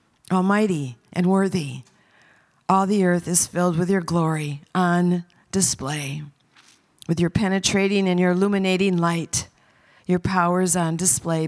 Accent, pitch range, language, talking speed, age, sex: American, 175-200 Hz, English, 130 wpm, 50-69, female